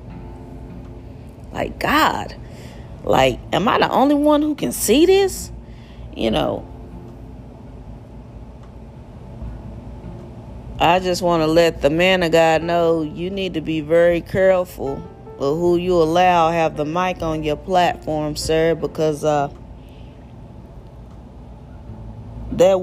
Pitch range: 140-170 Hz